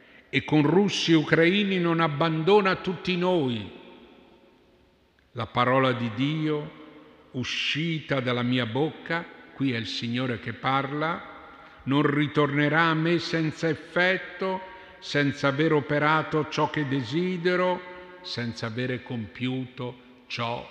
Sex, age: male, 50-69